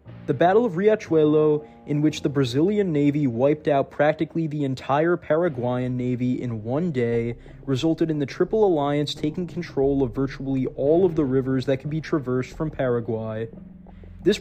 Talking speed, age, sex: 160 wpm, 20-39, male